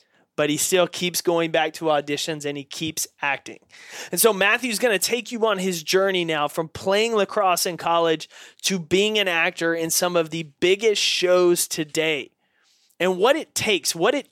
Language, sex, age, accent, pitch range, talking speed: English, male, 30-49, American, 165-200 Hz, 190 wpm